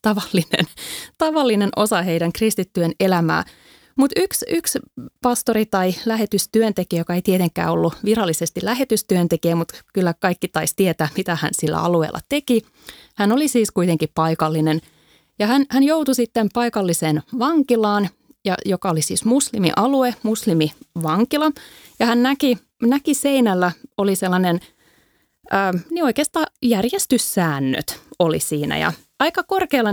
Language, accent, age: Finnish, native, 30-49